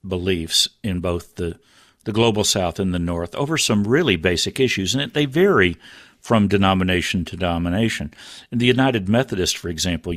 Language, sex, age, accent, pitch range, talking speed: English, male, 50-69, American, 95-125 Hz, 165 wpm